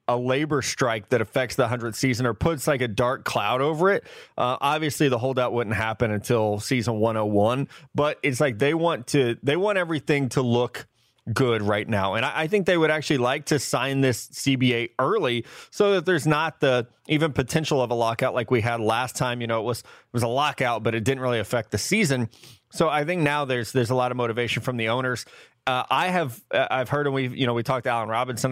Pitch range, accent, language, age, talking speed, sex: 120-140 Hz, American, English, 20-39, 235 wpm, male